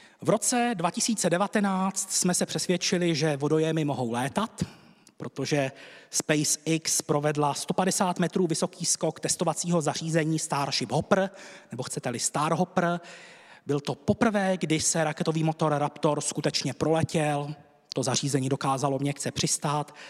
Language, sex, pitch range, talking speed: Czech, male, 150-180 Hz, 115 wpm